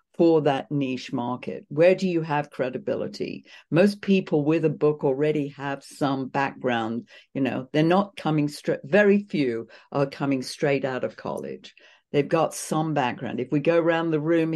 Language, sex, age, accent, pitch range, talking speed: English, female, 60-79, British, 140-170 Hz, 175 wpm